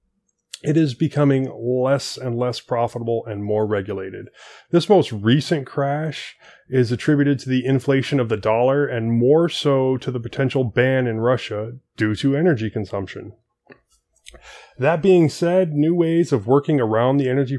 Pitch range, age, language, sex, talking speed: 115-140 Hz, 20-39, English, male, 155 wpm